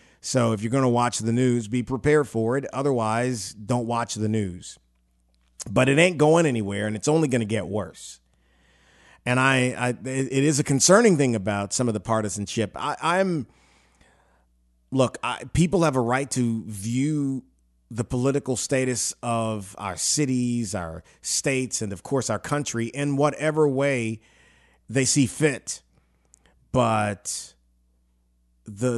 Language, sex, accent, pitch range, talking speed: English, male, American, 95-125 Hz, 145 wpm